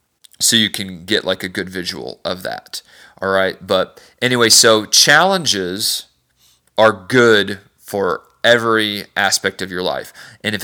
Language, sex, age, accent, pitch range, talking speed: English, male, 40-59, American, 95-115 Hz, 145 wpm